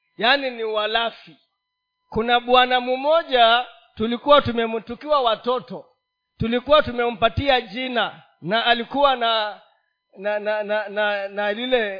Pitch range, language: 225-295 Hz, Swahili